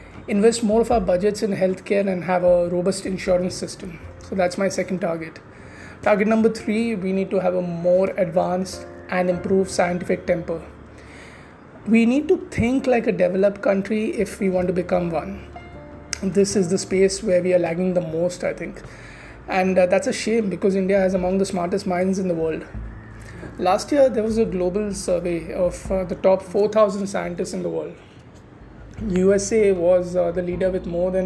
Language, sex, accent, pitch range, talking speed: English, male, Indian, 175-200 Hz, 185 wpm